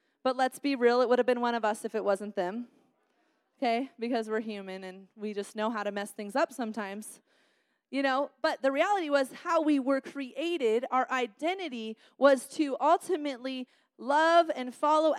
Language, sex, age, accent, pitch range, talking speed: English, female, 30-49, American, 240-315 Hz, 185 wpm